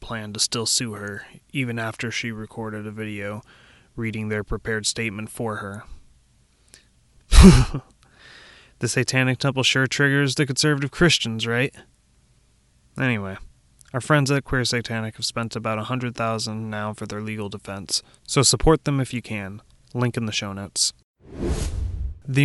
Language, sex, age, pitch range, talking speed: English, male, 30-49, 105-125 Hz, 140 wpm